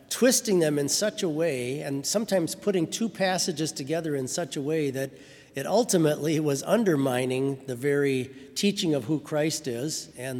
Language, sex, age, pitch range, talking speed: English, male, 50-69, 135-180 Hz, 165 wpm